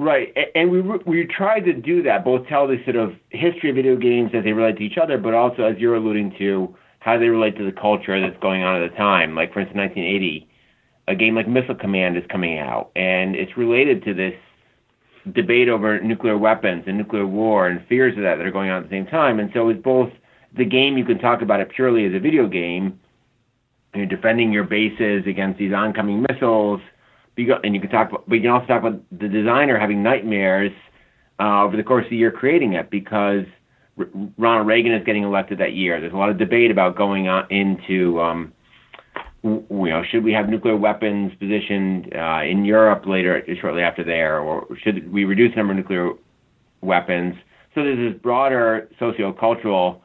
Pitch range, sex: 95-120 Hz, male